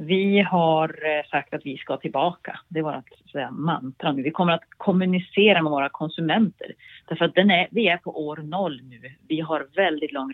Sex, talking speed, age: female, 190 wpm, 40-59